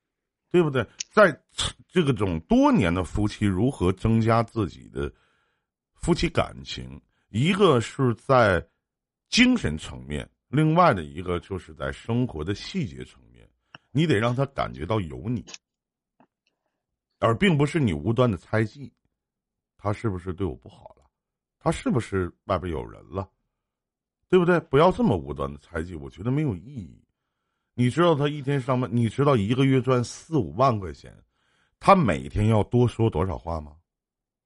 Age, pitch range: 50-69, 90-150 Hz